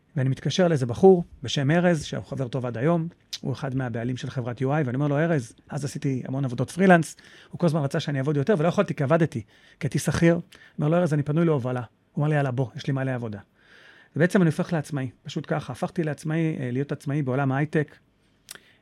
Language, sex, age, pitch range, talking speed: Hebrew, male, 40-59, 135-170 Hz, 215 wpm